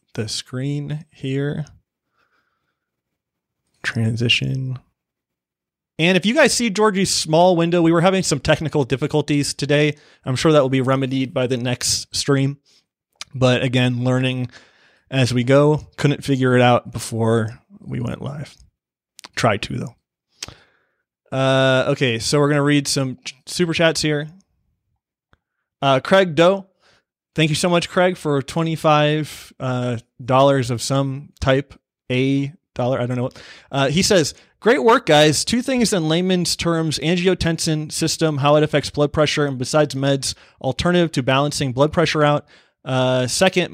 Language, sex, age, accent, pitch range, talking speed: English, male, 30-49, American, 130-165 Hz, 145 wpm